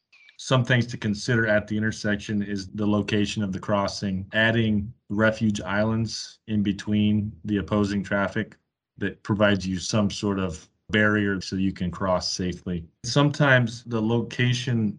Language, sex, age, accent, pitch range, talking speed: English, male, 30-49, American, 95-110 Hz, 145 wpm